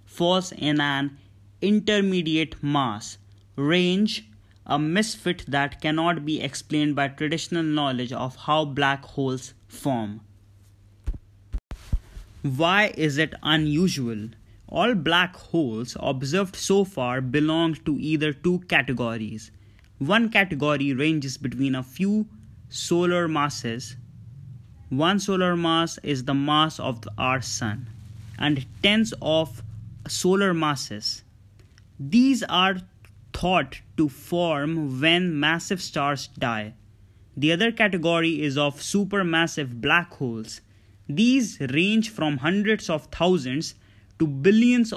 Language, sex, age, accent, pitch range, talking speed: English, male, 20-39, Indian, 115-170 Hz, 110 wpm